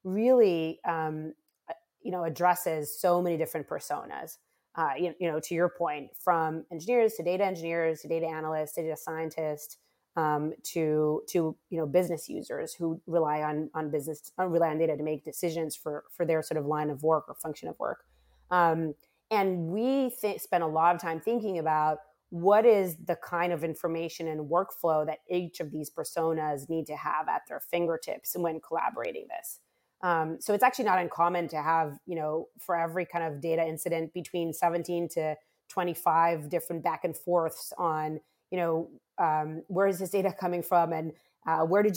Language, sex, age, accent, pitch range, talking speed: English, female, 30-49, American, 155-180 Hz, 185 wpm